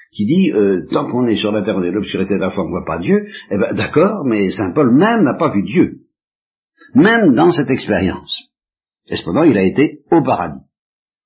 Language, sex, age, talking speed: French, male, 50-69, 230 wpm